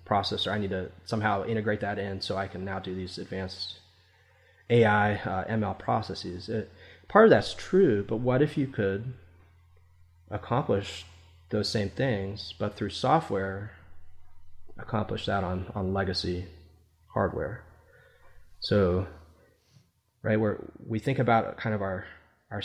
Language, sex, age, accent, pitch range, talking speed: English, male, 20-39, American, 90-110 Hz, 140 wpm